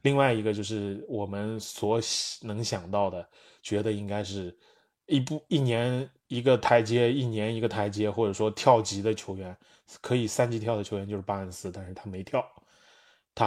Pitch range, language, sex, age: 100-120 Hz, Chinese, male, 20-39